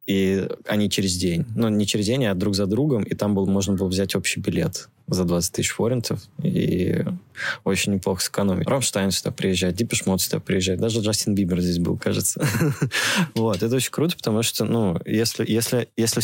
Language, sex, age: Russian, male, 20-39